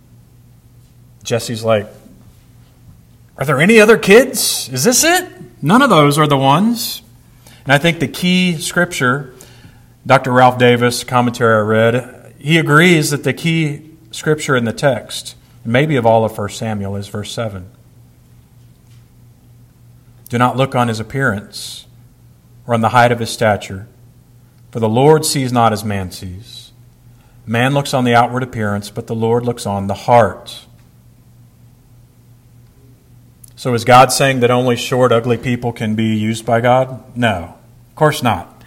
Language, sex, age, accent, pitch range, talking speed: English, male, 40-59, American, 120-145 Hz, 150 wpm